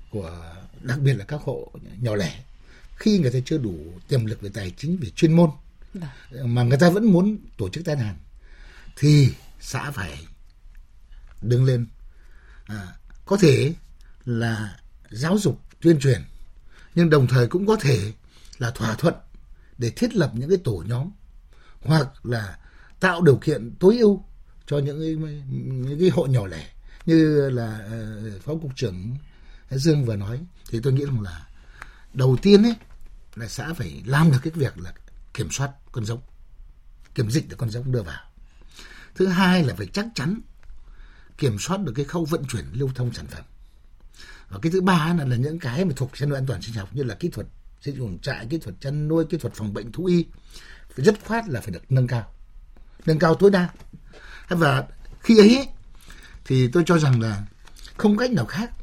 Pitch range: 110-165 Hz